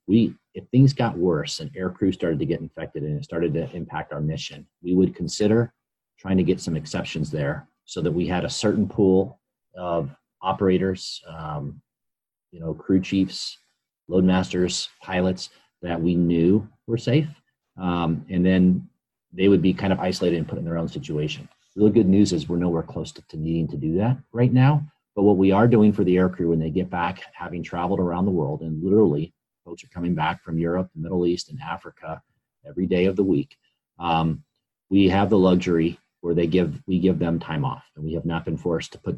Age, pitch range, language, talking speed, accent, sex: 40-59, 85-100 Hz, English, 205 wpm, American, male